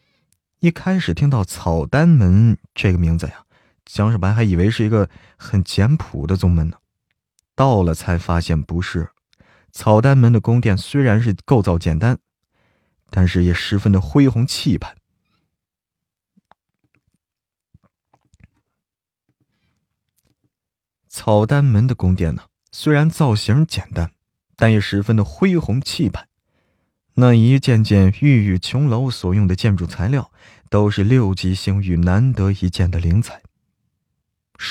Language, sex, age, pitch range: Chinese, male, 20-39, 90-125 Hz